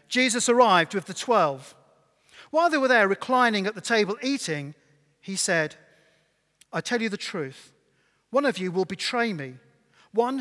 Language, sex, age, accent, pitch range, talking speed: English, male, 40-59, British, 155-220 Hz, 160 wpm